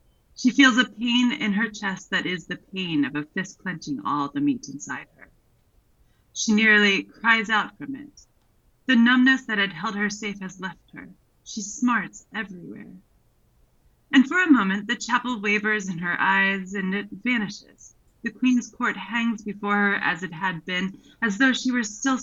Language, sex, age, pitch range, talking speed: English, female, 30-49, 185-240 Hz, 180 wpm